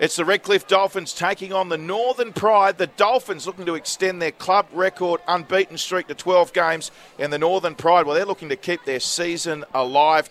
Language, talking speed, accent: English, 200 wpm, Australian